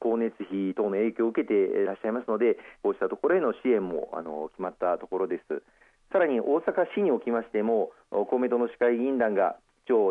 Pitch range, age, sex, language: 115-150 Hz, 40-59, male, Japanese